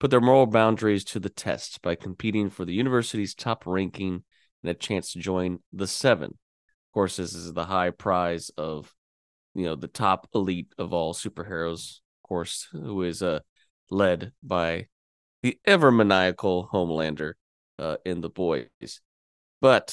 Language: English